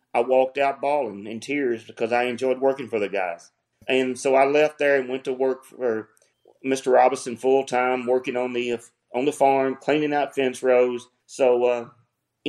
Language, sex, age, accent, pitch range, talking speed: English, male, 40-59, American, 125-155 Hz, 190 wpm